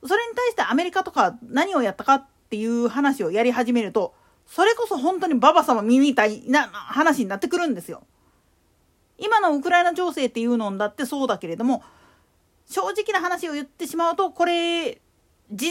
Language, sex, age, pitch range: Japanese, female, 40-59, 235-360 Hz